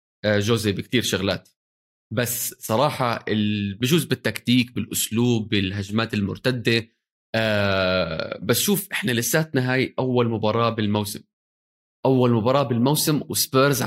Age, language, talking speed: 20-39, Arabic, 100 wpm